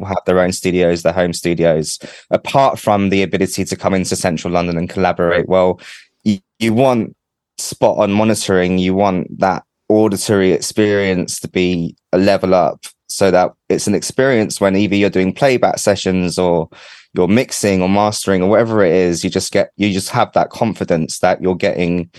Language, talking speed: English, 175 wpm